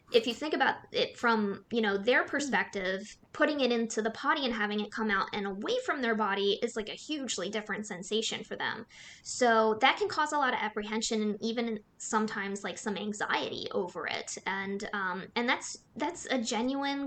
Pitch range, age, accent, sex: 210-285 Hz, 20-39, American, female